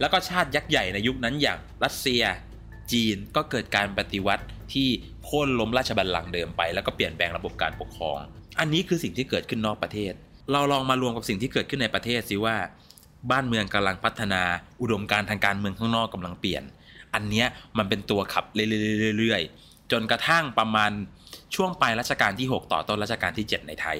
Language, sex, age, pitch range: Thai, male, 20-39, 100-130 Hz